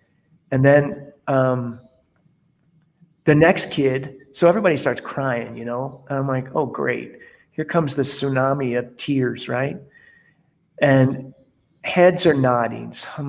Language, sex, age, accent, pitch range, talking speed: English, male, 40-59, American, 130-160 Hz, 135 wpm